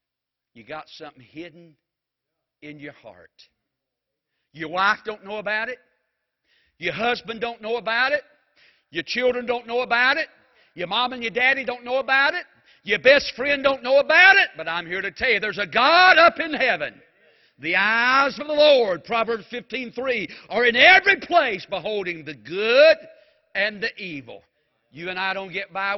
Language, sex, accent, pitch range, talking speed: English, male, American, 165-255 Hz, 175 wpm